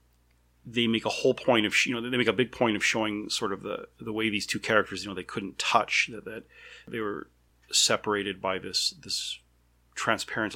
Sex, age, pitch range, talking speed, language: male, 30-49, 90-110 Hz, 215 wpm, English